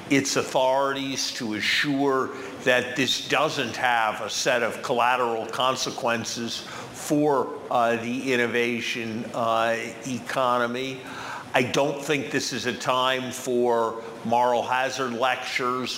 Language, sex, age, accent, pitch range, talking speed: English, male, 50-69, American, 115-130 Hz, 115 wpm